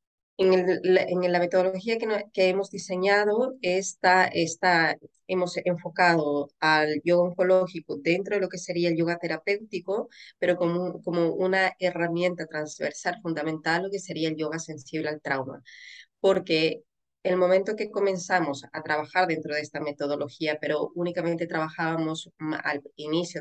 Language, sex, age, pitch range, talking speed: Spanish, female, 30-49, 155-185 Hz, 145 wpm